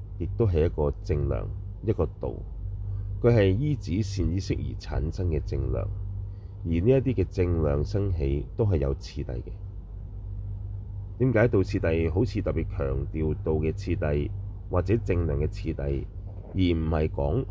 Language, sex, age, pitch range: Chinese, male, 30-49, 85-100 Hz